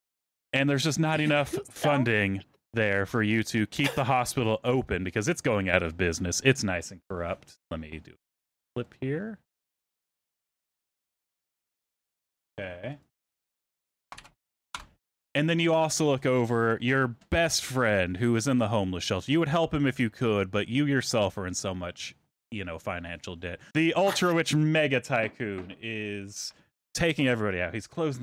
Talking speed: 160 wpm